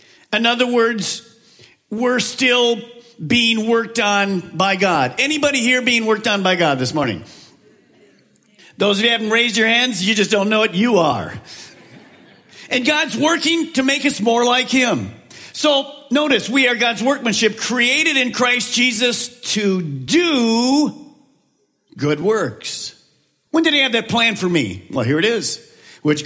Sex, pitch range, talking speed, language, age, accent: male, 200-250 Hz, 160 wpm, English, 50-69, American